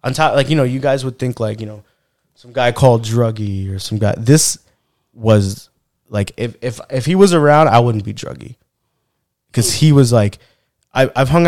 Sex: male